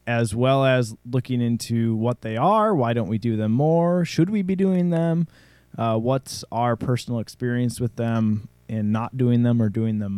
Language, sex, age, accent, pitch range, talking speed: English, male, 20-39, American, 100-120 Hz, 195 wpm